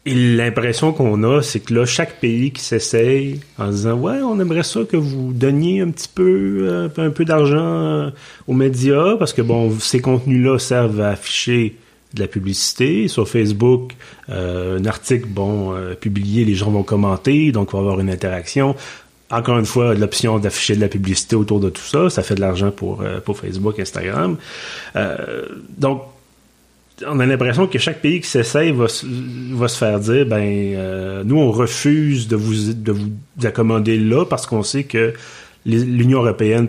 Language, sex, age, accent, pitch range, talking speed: French, male, 30-49, Canadian, 105-130 Hz, 185 wpm